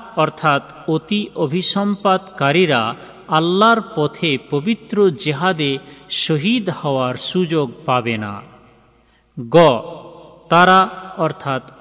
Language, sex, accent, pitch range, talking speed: Bengali, male, native, 135-195 Hz, 55 wpm